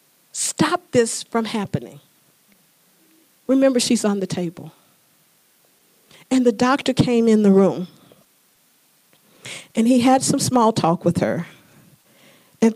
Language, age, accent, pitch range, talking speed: English, 50-69, American, 195-260 Hz, 120 wpm